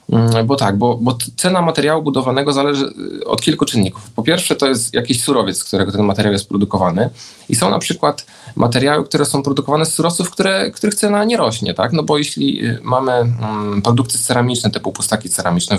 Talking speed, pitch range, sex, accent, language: 180 wpm, 100-135 Hz, male, native, Polish